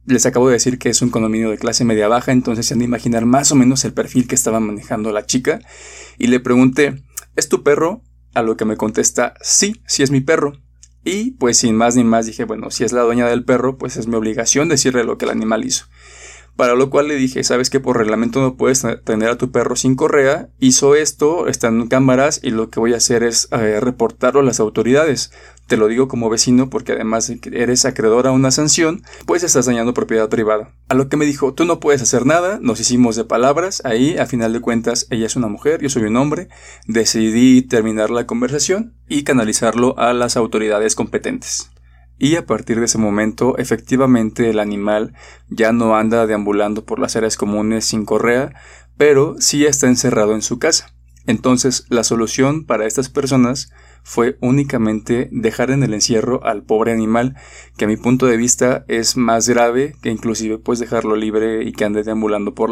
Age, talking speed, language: 20-39, 205 wpm, Spanish